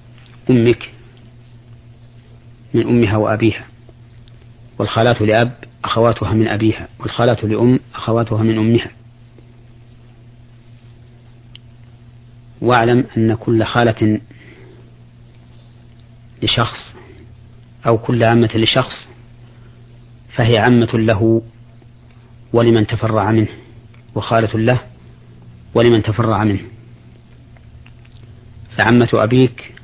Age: 40-59